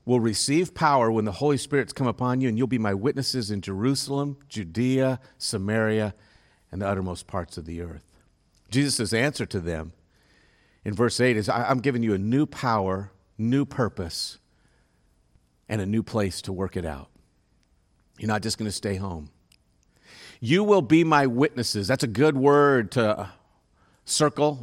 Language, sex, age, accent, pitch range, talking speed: English, male, 50-69, American, 100-140 Hz, 165 wpm